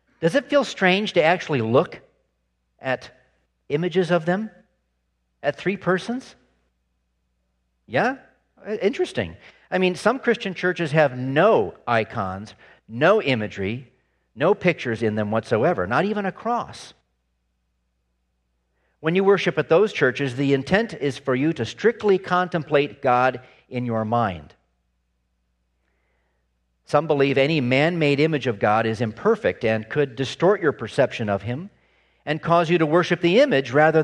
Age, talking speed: 50-69, 135 wpm